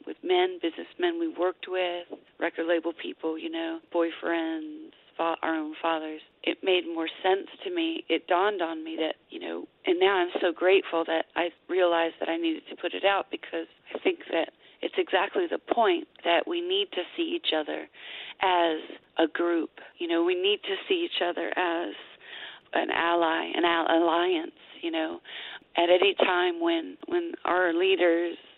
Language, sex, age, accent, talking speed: English, female, 40-59, American, 175 wpm